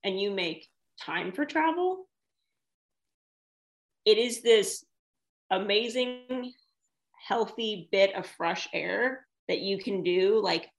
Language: English